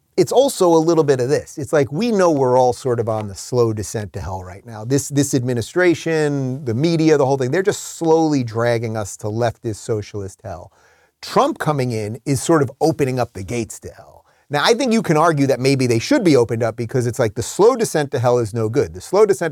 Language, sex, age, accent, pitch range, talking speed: English, male, 30-49, American, 120-160 Hz, 245 wpm